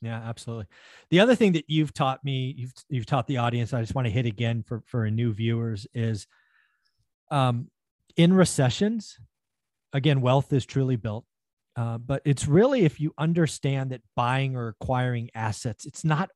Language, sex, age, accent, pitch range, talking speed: English, male, 40-59, American, 120-170 Hz, 170 wpm